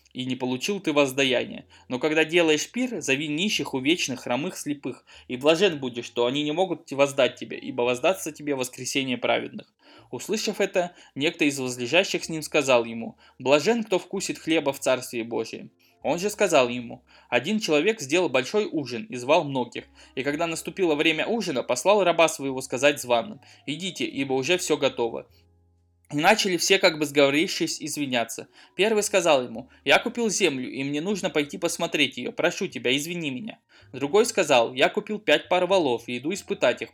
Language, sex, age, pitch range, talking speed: Russian, male, 20-39, 130-180 Hz, 170 wpm